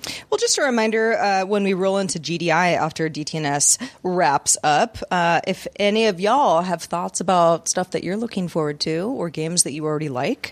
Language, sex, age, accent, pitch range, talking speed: English, female, 30-49, American, 180-235 Hz, 195 wpm